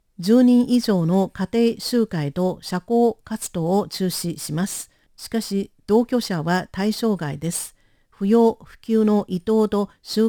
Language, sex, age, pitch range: Japanese, female, 50-69, 175-225 Hz